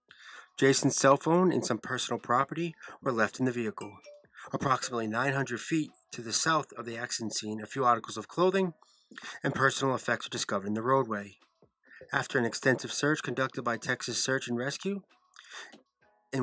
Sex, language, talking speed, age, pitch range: male, English, 170 wpm, 30-49, 110-135 Hz